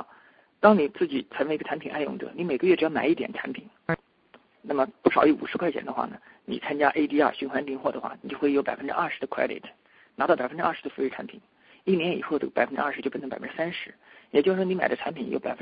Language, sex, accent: English, male, Chinese